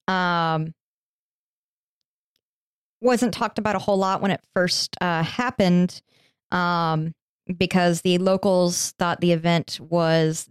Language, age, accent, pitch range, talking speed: English, 20-39, American, 160-185 Hz, 115 wpm